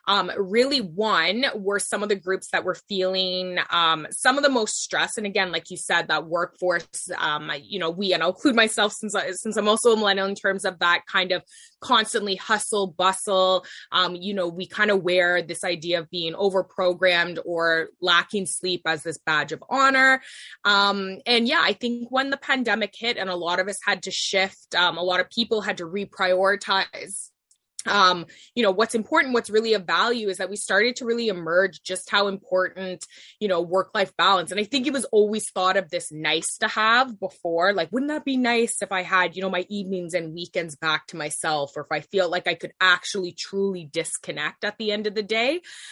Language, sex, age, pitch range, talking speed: English, female, 20-39, 175-215 Hz, 215 wpm